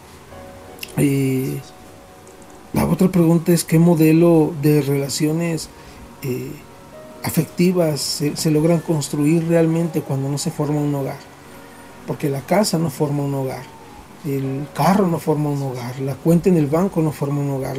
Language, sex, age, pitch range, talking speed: Spanish, male, 40-59, 145-175 Hz, 150 wpm